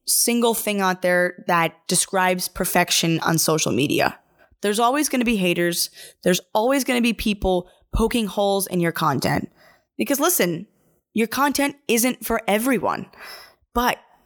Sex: female